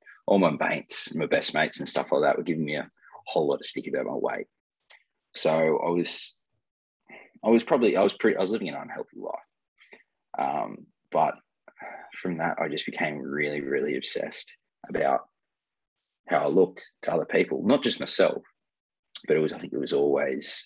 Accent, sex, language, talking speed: Australian, male, English, 185 wpm